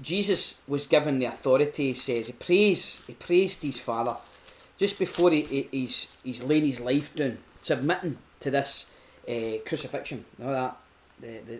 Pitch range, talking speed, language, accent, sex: 120-155 Hz, 160 wpm, English, British, male